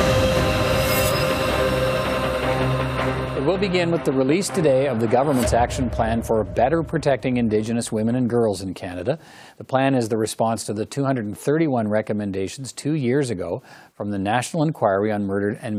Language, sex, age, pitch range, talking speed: English, male, 50-69, 105-140 Hz, 150 wpm